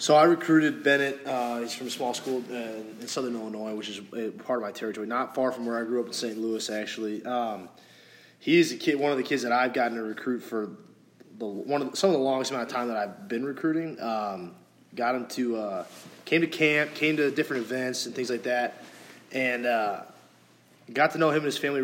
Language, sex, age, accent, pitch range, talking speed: English, male, 20-39, American, 115-135 Hz, 235 wpm